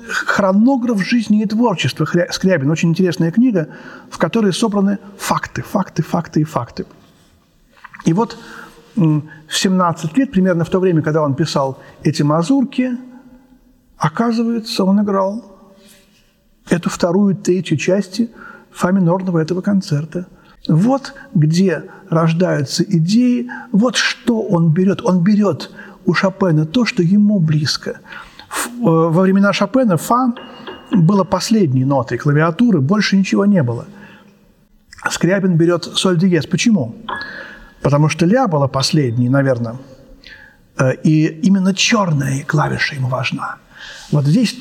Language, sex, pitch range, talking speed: Russian, male, 165-210 Hz, 115 wpm